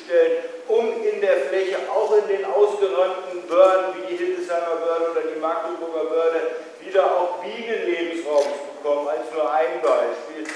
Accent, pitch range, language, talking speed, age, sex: German, 175-220 Hz, German, 155 wpm, 50-69, male